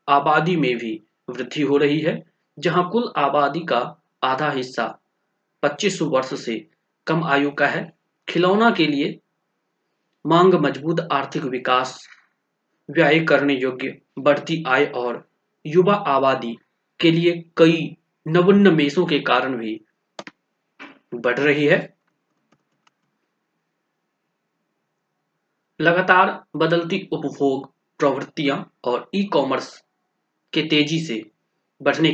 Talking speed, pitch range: 95 wpm, 135-170 Hz